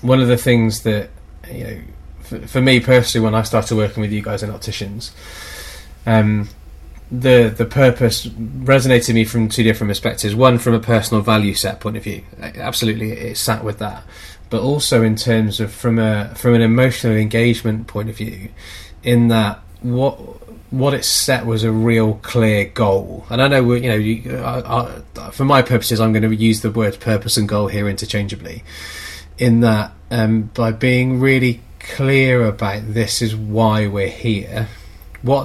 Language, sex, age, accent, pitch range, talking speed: English, male, 20-39, British, 105-120 Hz, 180 wpm